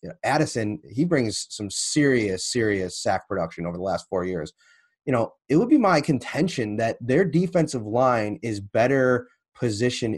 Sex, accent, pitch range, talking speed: male, American, 110-130 Hz, 160 wpm